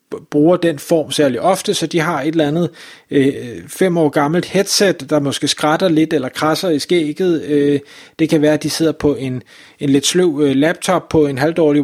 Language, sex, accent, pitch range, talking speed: Danish, male, native, 145-170 Hz, 205 wpm